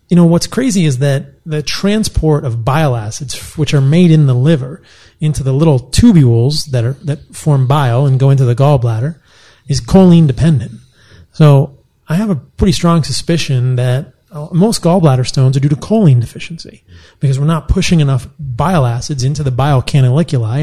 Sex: male